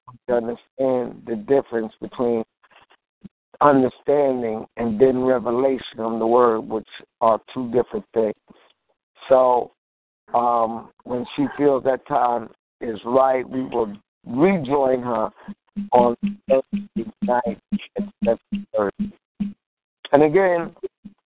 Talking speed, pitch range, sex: 105 wpm, 115-145 Hz, male